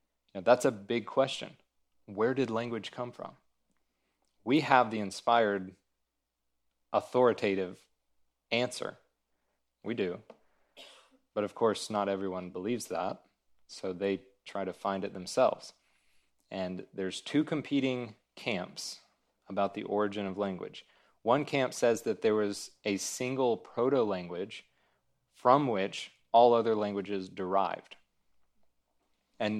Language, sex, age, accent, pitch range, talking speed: English, male, 30-49, American, 95-115 Hz, 115 wpm